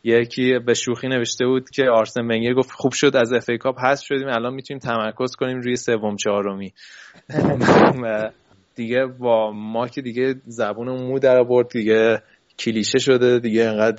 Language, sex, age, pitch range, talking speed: Persian, male, 20-39, 110-125 Hz, 165 wpm